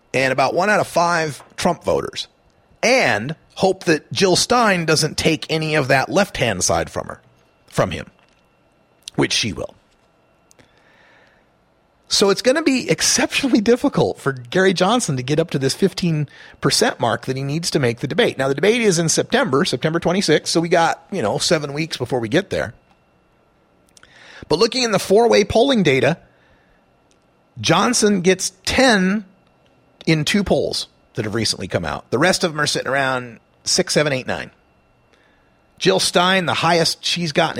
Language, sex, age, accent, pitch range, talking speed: English, male, 40-59, American, 140-190 Hz, 170 wpm